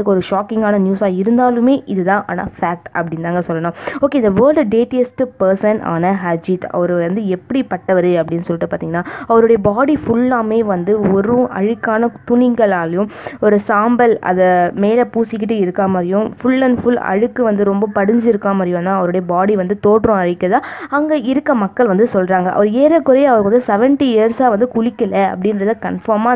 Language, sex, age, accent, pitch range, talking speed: Tamil, female, 20-39, native, 185-235 Hz, 125 wpm